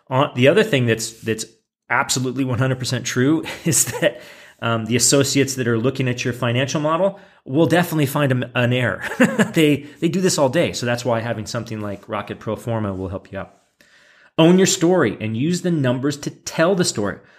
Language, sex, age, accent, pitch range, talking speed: English, male, 30-49, American, 115-150 Hz, 195 wpm